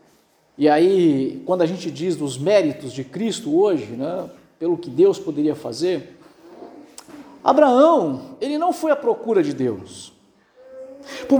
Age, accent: 50-69, Brazilian